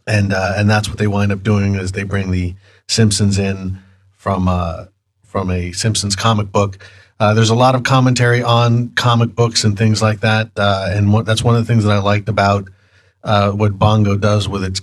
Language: English